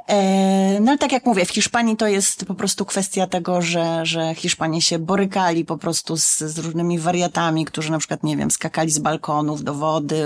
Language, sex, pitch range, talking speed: Polish, female, 155-180 Hz, 200 wpm